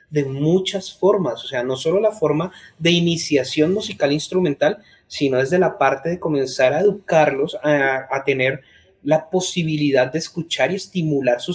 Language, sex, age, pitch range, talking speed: Spanish, male, 30-49, 135-180 Hz, 160 wpm